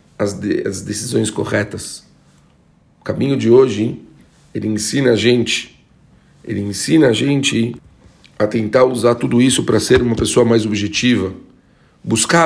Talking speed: 145 wpm